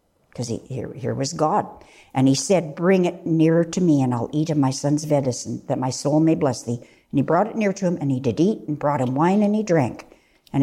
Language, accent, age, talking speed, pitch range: English, American, 60-79, 260 wpm, 145-215 Hz